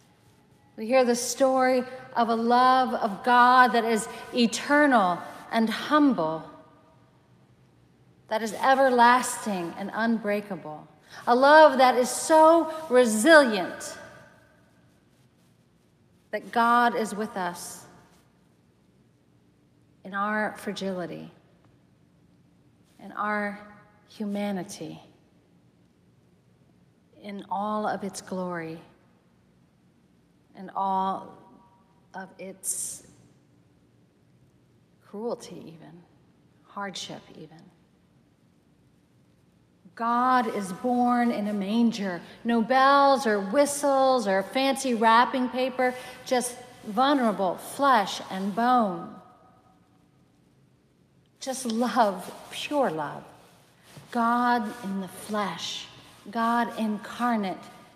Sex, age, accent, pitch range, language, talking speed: female, 40-59, American, 190-245 Hz, English, 80 wpm